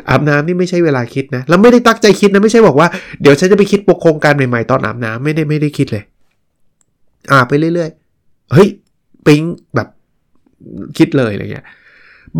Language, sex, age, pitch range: Thai, male, 20-39, 125-160 Hz